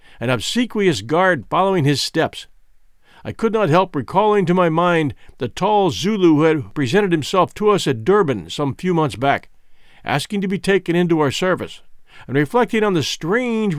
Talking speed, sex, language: 180 wpm, male, English